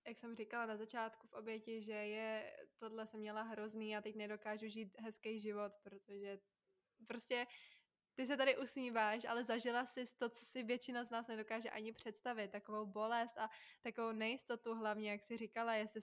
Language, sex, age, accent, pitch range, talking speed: Czech, female, 20-39, native, 215-245 Hz, 175 wpm